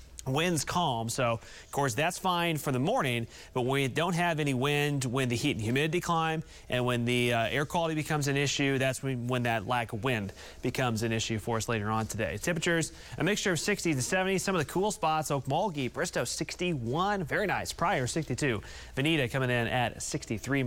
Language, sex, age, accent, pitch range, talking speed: English, male, 30-49, American, 125-155 Hz, 205 wpm